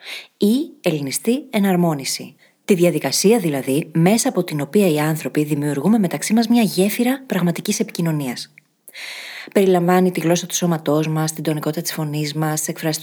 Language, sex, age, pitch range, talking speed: Greek, female, 20-39, 155-210 Hz, 145 wpm